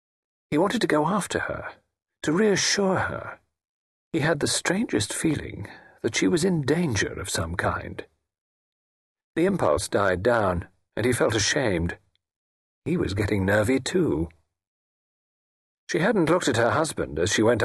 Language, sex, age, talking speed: English, male, 50-69, 150 wpm